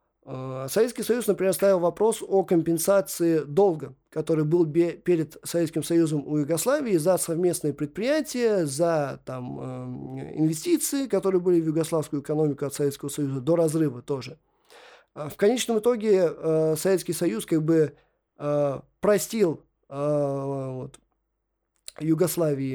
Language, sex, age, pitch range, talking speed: Russian, male, 20-39, 150-200 Hz, 125 wpm